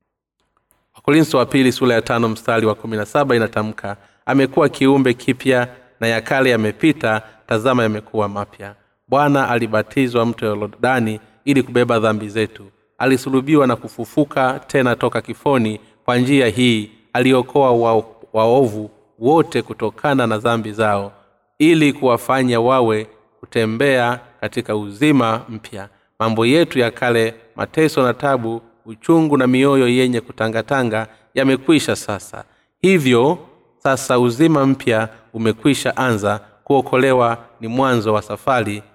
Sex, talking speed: male, 115 wpm